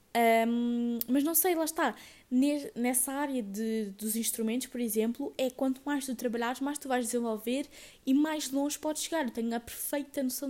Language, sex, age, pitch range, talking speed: Portuguese, female, 20-39, 235-285 Hz, 185 wpm